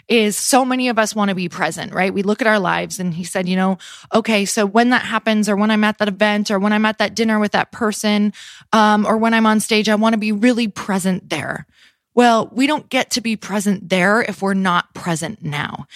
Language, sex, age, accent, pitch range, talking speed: English, female, 20-39, American, 190-220 Hz, 250 wpm